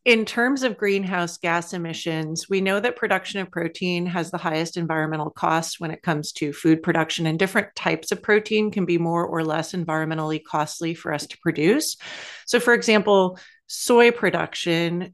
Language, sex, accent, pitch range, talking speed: English, female, American, 160-205 Hz, 175 wpm